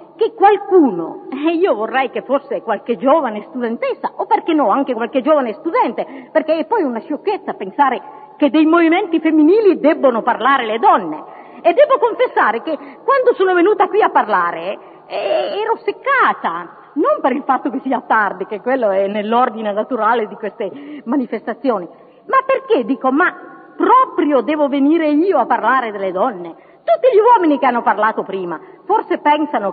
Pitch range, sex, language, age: 265-385 Hz, female, Italian, 40-59